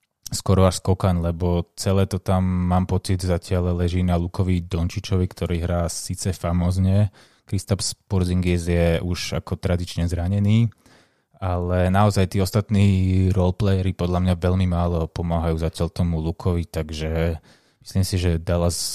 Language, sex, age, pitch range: Slovak, male, 20-39, 90-100 Hz